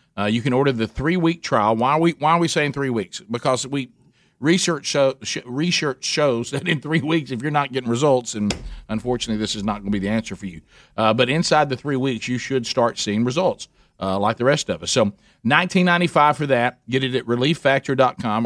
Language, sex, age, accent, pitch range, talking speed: English, male, 50-69, American, 110-145 Hz, 225 wpm